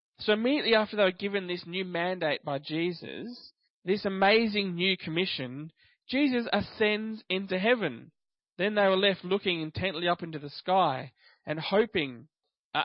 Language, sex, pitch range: English, male, 155-200 Hz